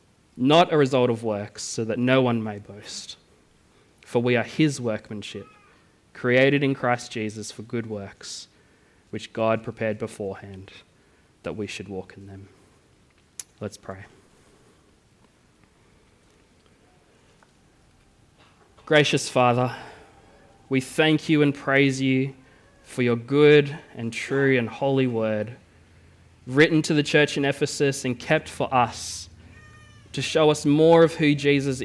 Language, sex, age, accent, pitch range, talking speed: English, male, 20-39, Australian, 105-135 Hz, 130 wpm